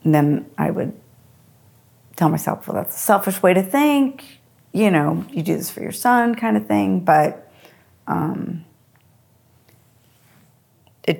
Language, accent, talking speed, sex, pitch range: English, American, 145 wpm, female, 135-195 Hz